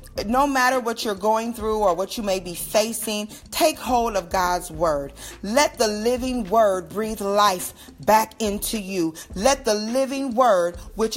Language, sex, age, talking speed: English, female, 40-59, 165 wpm